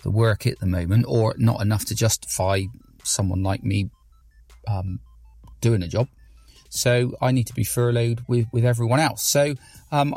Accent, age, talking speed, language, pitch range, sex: British, 40-59, 170 wpm, English, 105-125 Hz, male